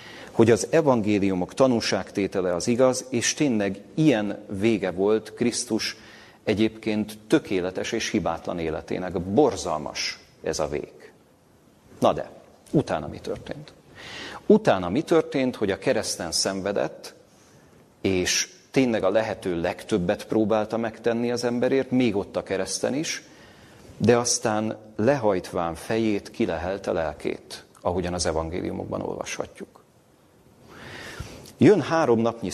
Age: 40-59